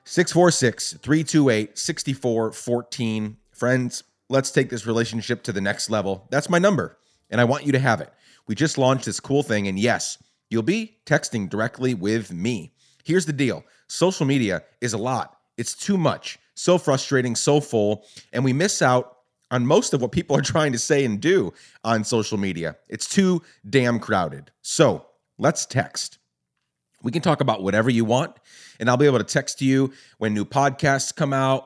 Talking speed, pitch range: 175 wpm, 110-140 Hz